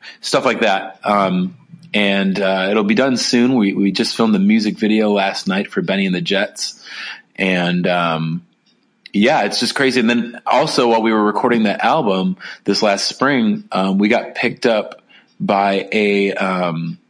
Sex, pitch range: male, 90-105 Hz